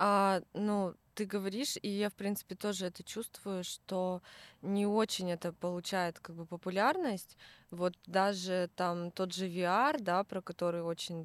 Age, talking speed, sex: 20-39, 150 wpm, female